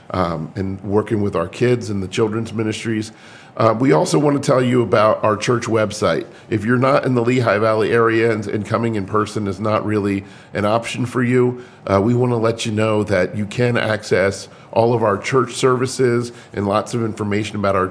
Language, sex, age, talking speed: English, male, 40-59, 210 wpm